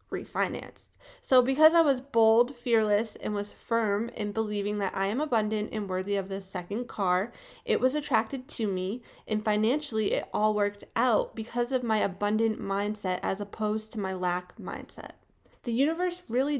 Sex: female